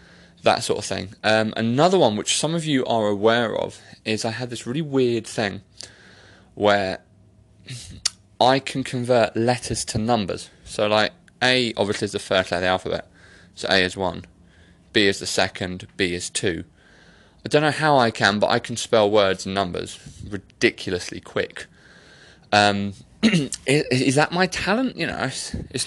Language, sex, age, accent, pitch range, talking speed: English, male, 20-39, British, 100-130 Hz, 175 wpm